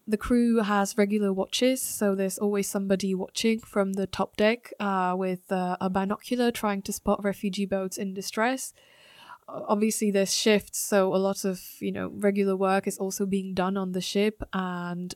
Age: 20-39